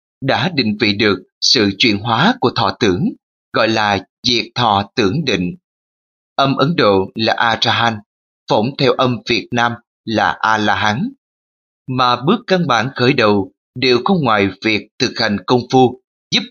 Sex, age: male, 20-39